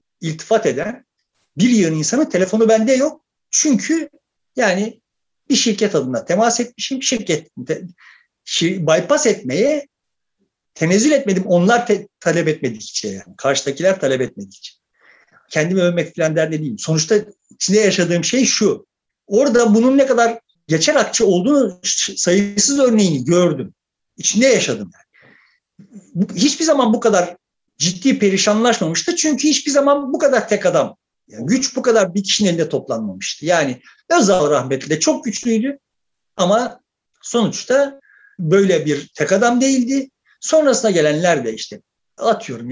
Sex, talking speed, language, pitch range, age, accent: male, 130 wpm, Turkish, 180-275 Hz, 60-79, native